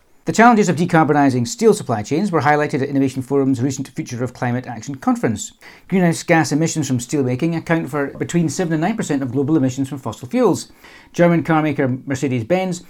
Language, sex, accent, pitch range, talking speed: English, male, British, 130-165 Hz, 180 wpm